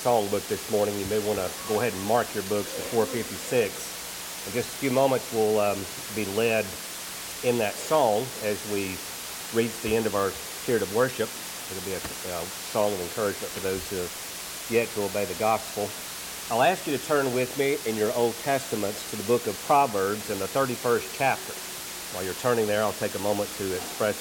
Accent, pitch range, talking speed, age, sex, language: American, 100-120 Hz, 210 wpm, 50-69, male, English